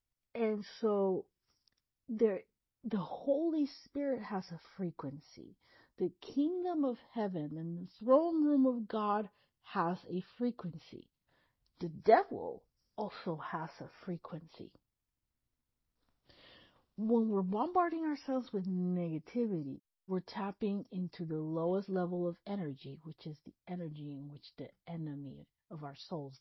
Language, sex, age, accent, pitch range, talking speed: English, female, 50-69, American, 155-195 Hz, 120 wpm